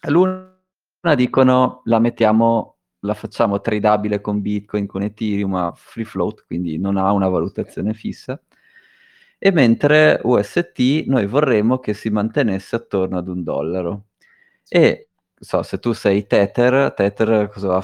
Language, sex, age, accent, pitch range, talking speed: Italian, male, 20-39, native, 95-115 Hz, 140 wpm